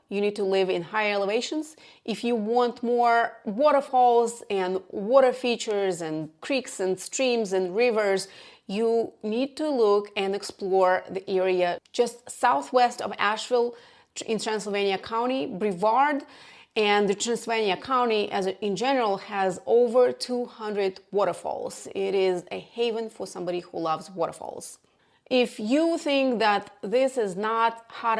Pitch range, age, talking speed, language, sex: 190-250 Hz, 30-49, 140 wpm, English, female